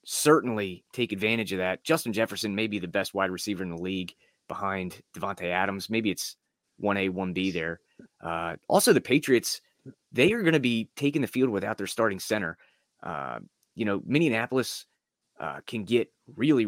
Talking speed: 175 wpm